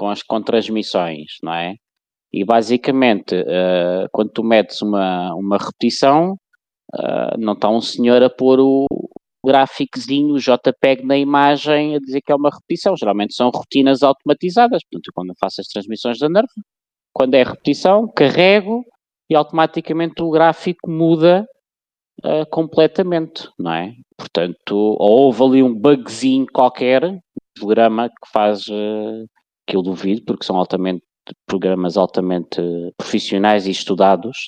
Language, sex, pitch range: Portuguese, male, 100-145 Hz